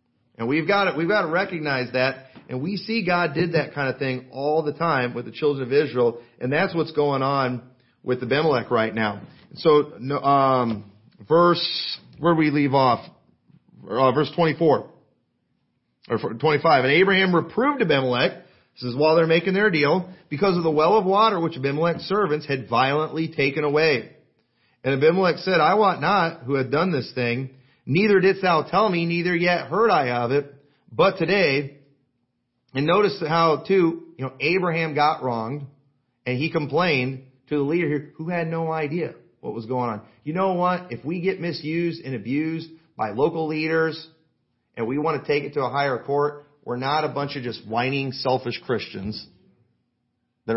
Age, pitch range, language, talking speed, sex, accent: 40-59, 130-165 Hz, English, 180 wpm, male, American